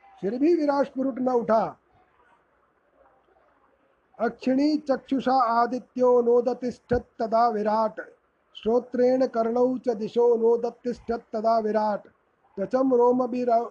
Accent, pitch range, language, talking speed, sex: native, 225-245 Hz, Hindi, 80 wpm, male